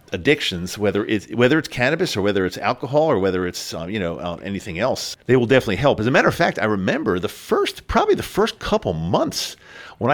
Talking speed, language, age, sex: 225 wpm, English, 50-69, male